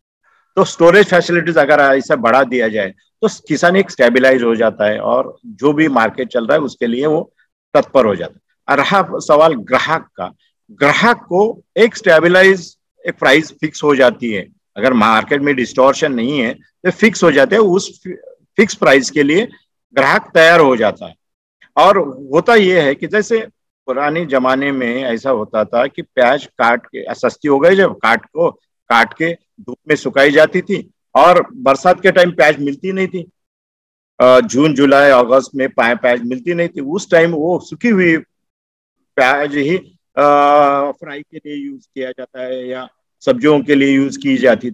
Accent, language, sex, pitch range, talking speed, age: native, Hindi, male, 135-190 Hz, 155 wpm, 50-69